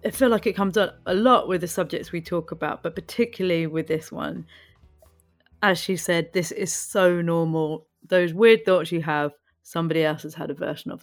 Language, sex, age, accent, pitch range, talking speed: English, female, 30-49, British, 155-180 Hz, 205 wpm